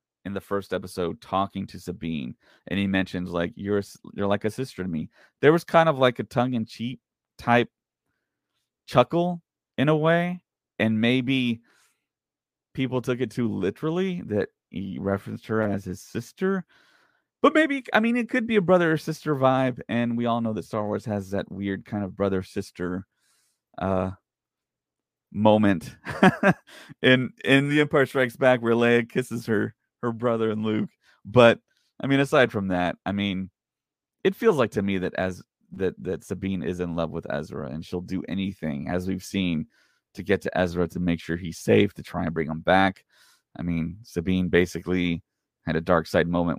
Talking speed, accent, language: 175 wpm, American, English